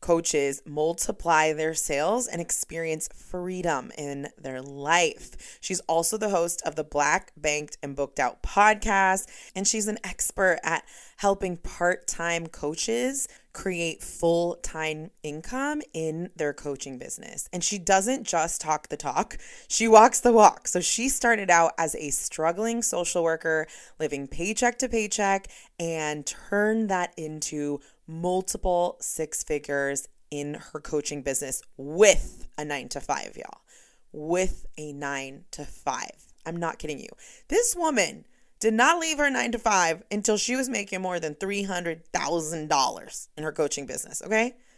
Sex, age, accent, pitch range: female, 20-39, American, 155-225 Hz